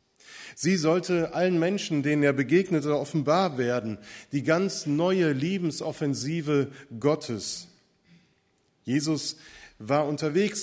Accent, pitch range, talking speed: German, 135-170 Hz, 95 wpm